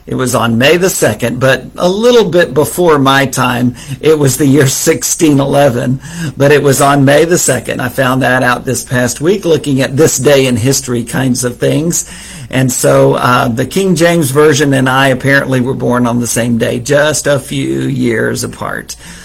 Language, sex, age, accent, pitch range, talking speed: English, male, 50-69, American, 125-150 Hz, 195 wpm